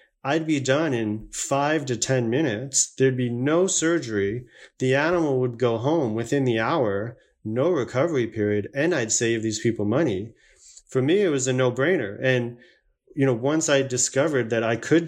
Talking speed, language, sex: 180 wpm, English, male